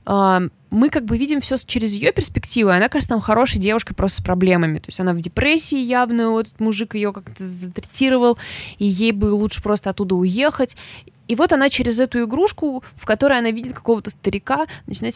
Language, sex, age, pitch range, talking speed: Russian, female, 20-39, 190-235 Hz, 195 wpm